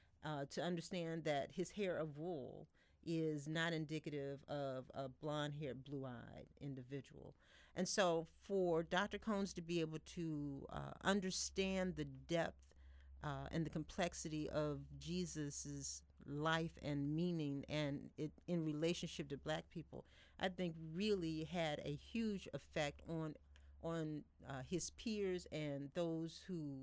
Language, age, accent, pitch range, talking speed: English, 40-59, American, 140-175 Hz, 135 wpm